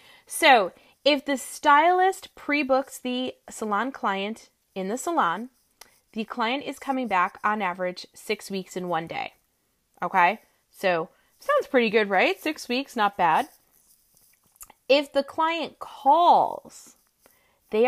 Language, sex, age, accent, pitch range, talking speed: English, female, 20-39, American, 190-275 Hz, 130 wpm